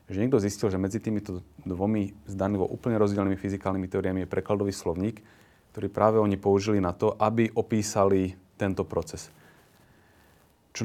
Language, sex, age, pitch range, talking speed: Slovak, male, 30-49, 95-110 Hz, 145 wpm